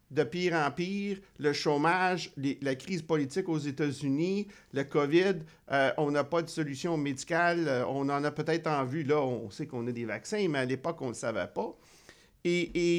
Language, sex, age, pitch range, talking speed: French, male, 50-69, 140-175 Hz, 205 wpm